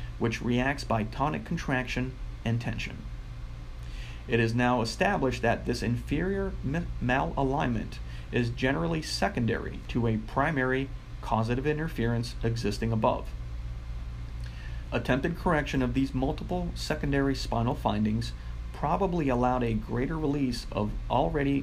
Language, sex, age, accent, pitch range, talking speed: English, male, 40-59, American, 105-135 Hz, 110 wpm